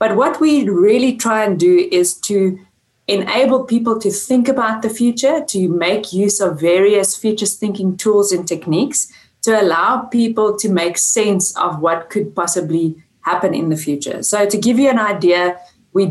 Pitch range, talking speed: 175-220 Hz, 175 wpm